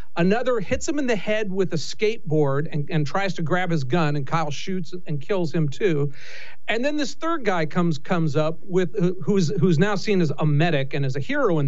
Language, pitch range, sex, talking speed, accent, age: English, 145-195 Hz, male, 225 wpm, American, 50-69